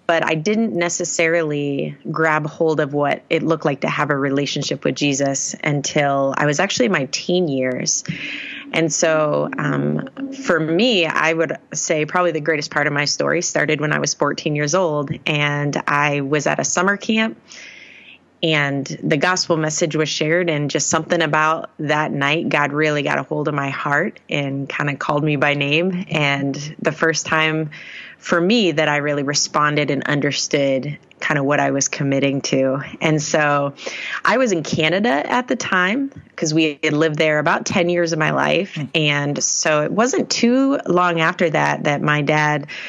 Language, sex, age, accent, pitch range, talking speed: English, female, 30-49, American, 145-175 Hz, 185 wpm